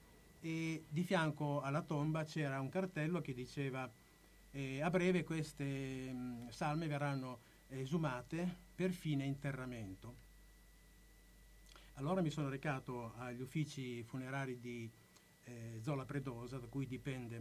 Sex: male